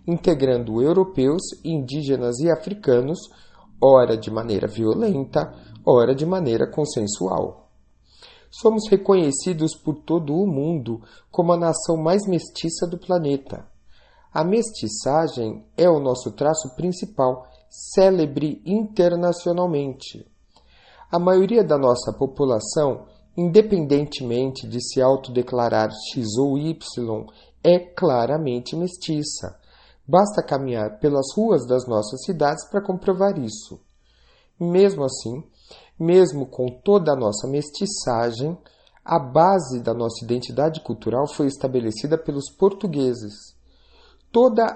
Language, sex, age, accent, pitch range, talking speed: Portuguese, male, 40-59, Brazilian, 125-175 Hz, 105 wpm